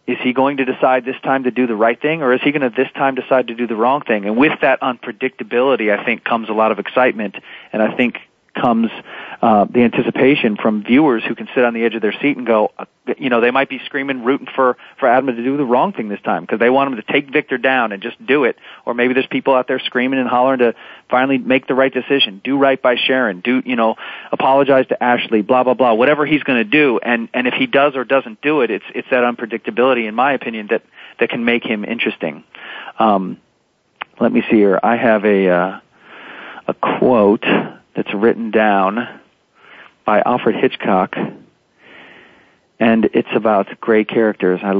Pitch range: 110-130 Hz